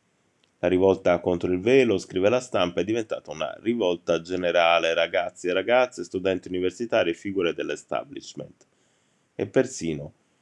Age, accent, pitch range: 20-39, native, 90-115 Hz